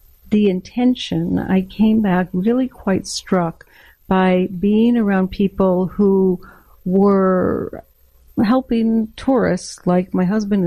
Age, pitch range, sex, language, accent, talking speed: 60-79, 175-200 Hz, female, English, American, 105 wpm